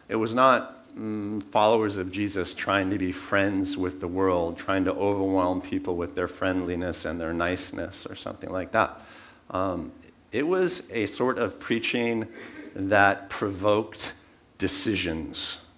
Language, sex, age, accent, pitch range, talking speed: English, male, 50-69, American, 90-105 Hz, 145 wpm